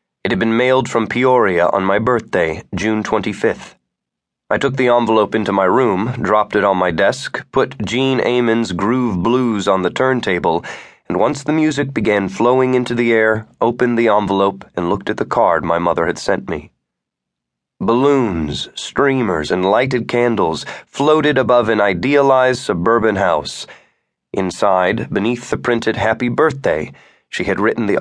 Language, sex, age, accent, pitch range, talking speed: English, male, 30-49, American, 100-125 Hz, 160 wpm